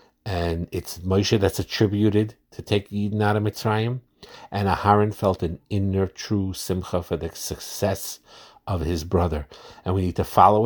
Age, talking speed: 50-69, 165 wpm